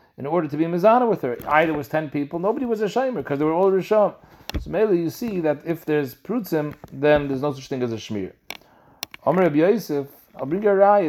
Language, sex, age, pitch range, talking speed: English, male, 40-59, 130-175 Hz, 240 wpm